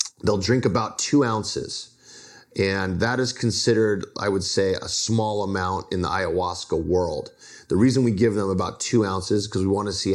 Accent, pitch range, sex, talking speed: American, 95-110 Hz, male, 195 wpm